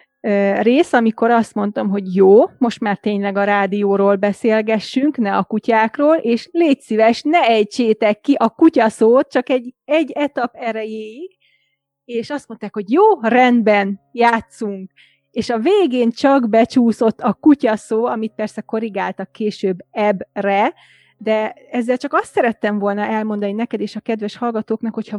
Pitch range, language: 205-240 Hz, Hungarian